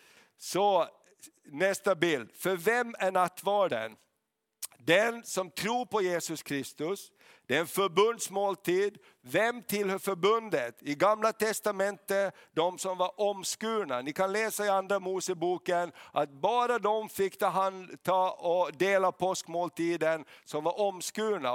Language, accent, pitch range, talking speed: Swedish, native, 165-205 Hz, 125 wpm